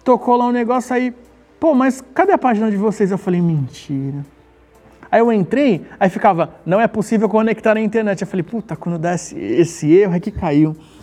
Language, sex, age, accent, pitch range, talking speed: Portuguese, male, 30-49, Brazilian, 165-210 Hz, 195 wpm